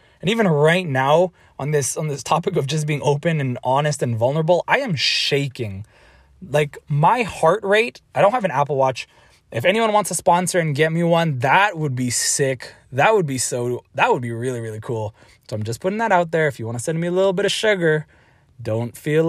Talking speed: 225 wpm